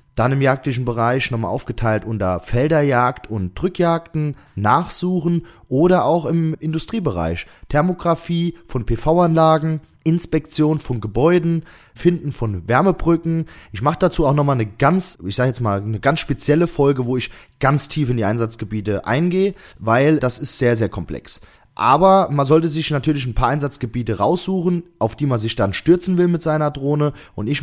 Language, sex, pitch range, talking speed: German, male, 115-165 Hz, 160 wpm